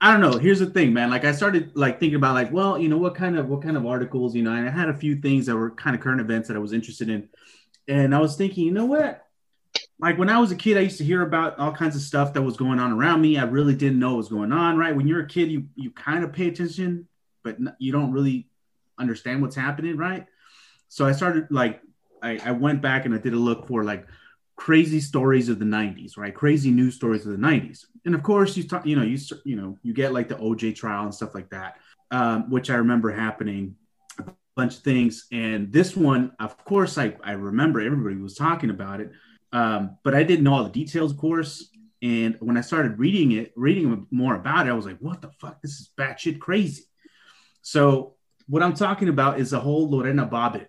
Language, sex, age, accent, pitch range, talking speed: English, male, 30-49, American, 120-165 Hz, 245 wpm